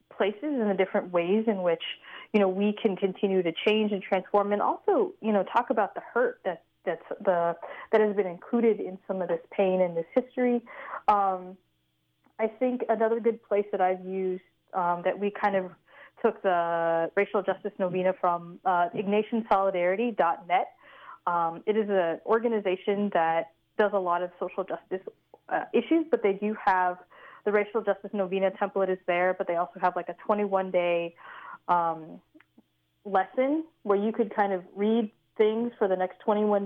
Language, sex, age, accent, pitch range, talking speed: English, female, 20-39, American, 180-215 Hz, 170 wpm